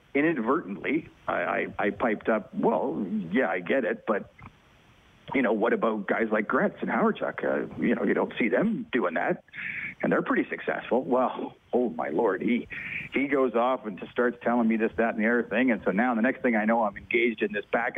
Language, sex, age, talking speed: English, male, 40-59, 220 wpm